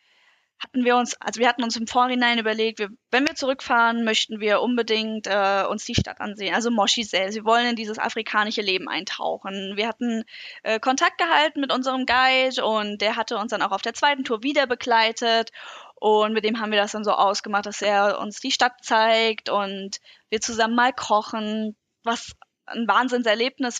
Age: 10-29